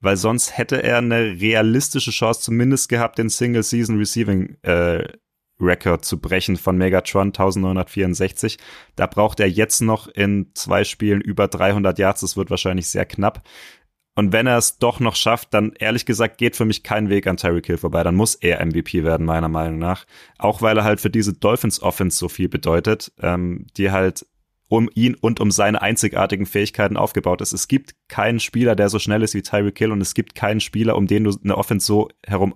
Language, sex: German, male